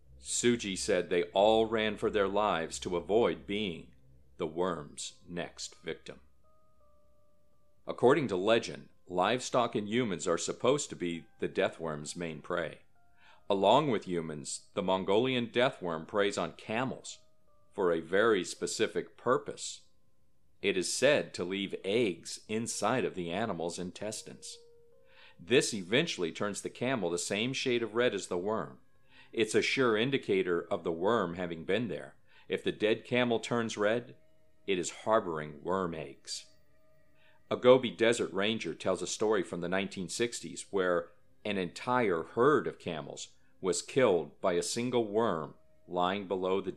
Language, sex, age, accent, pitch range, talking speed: English, male, 50-69, American, 85-115 Hz, 145 wpm